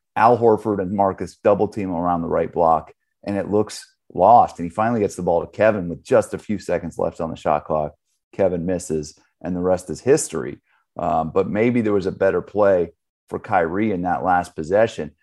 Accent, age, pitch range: American, 30-49, 85-105 Hz